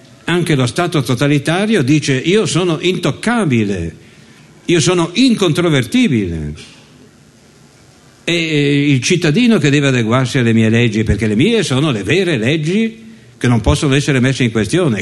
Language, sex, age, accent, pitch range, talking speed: Italian, male, 60-79, native, 110-155 Hz, 135 wpm